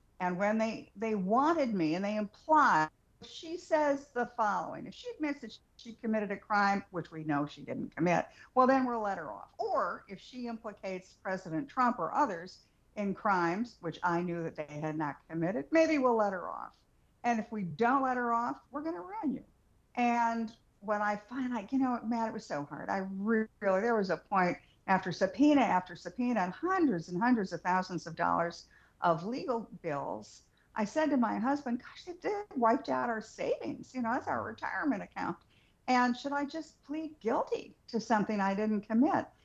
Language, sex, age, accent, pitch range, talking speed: English, female, 50-69, American, 190-260 Hz, 195 wpm